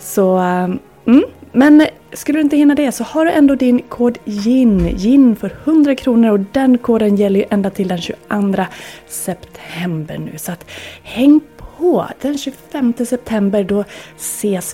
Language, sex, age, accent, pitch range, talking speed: Swedish, female, 20-39, native, 180-245 Hz, 160 wpm